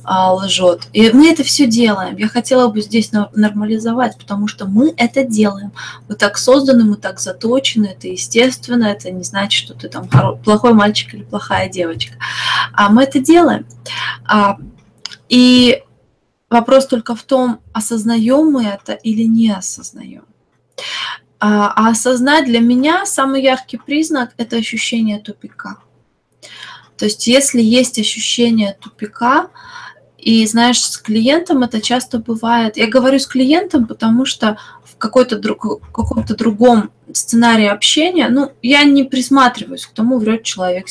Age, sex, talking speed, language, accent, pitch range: 20-39, female, 140 wpm, Russian, native, 205-260 Hz